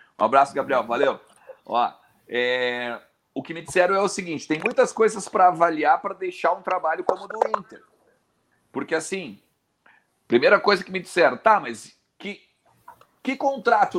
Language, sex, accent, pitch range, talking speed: Portuguese, male, Brazilian, 160-255 Hz, 160 wpm